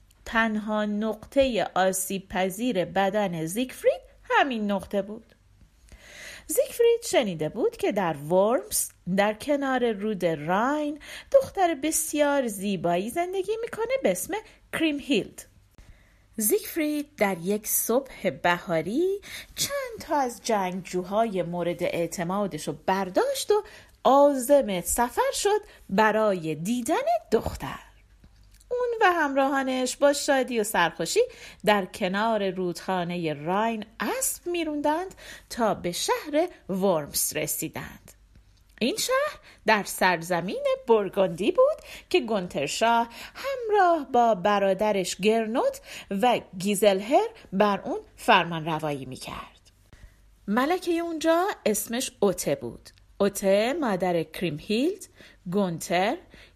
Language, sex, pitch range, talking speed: Persian, female, 185-300 Hz, 100 wpm